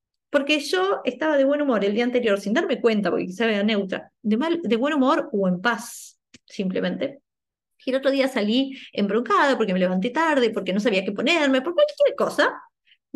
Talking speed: 205 wpm